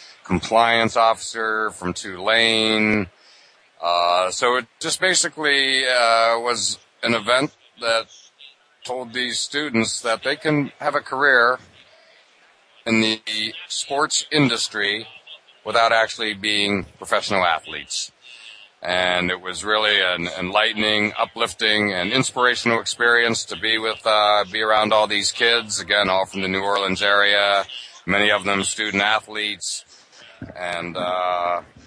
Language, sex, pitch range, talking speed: English, male, 95-110 Hz, 120 wpm